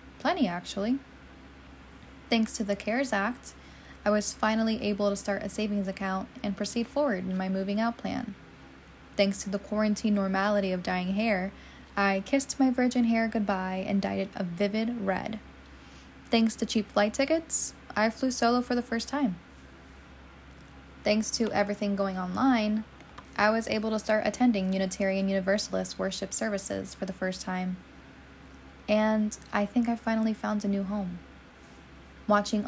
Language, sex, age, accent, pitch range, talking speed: English, female, 10-29, American, 180-220 Hz, 155 wpm